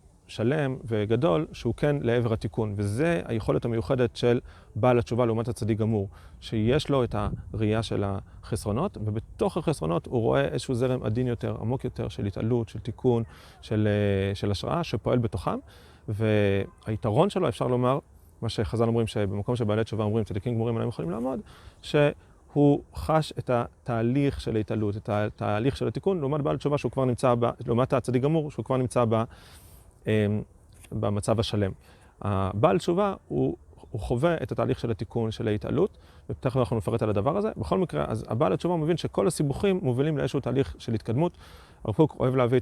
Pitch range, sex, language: 105-130 Hz, male, Hebrew